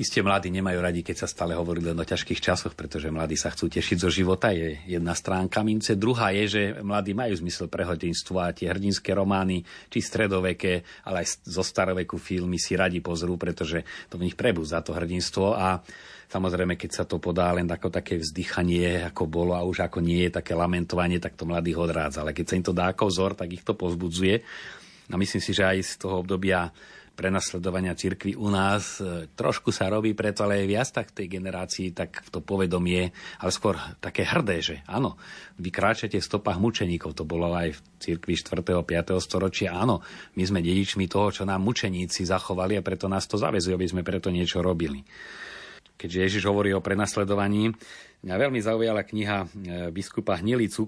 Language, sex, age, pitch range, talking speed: Slovak, male, 40-59, 90-100 Hz, 195 wpm